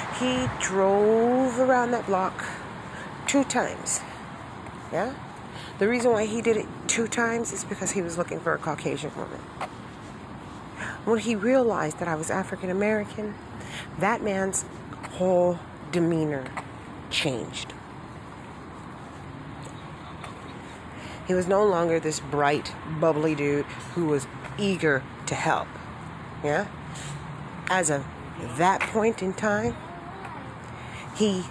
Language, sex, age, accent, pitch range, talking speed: English, female, 40-59, American, 150-190 Hz, 110 wpm